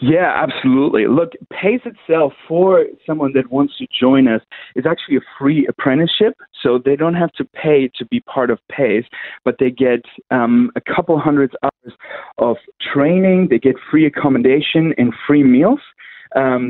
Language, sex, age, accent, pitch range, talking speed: English, male, 30-49, American, 125-150 Hz, 165 wpm